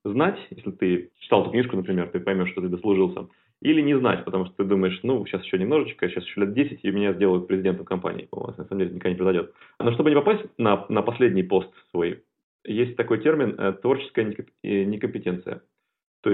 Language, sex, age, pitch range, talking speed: Russian, male, 30-49, 95-110 Hz, 210 wpm